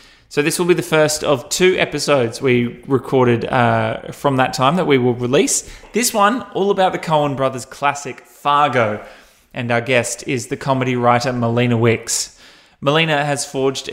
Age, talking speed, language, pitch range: 20-39, 170 wpm, English, 130-160 Hz